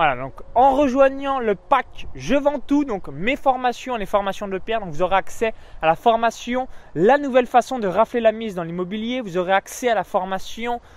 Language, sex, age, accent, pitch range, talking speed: French, male, 20-39, French, 185-245 Hz, 210 wpm